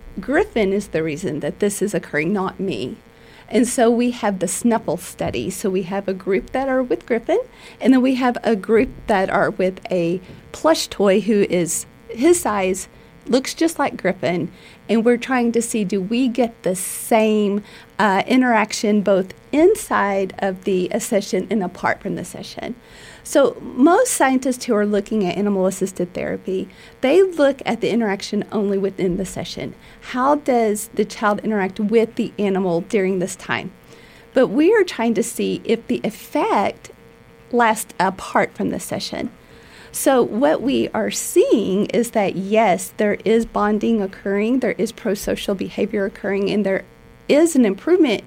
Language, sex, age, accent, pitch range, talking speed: English, female, 40-59, American, 195-240 Hz, 165 wpm